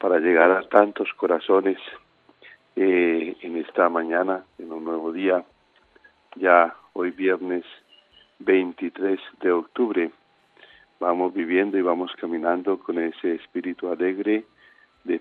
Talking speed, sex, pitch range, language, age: 115 wpm, male, 85-100 Hz, Spanish, 50-69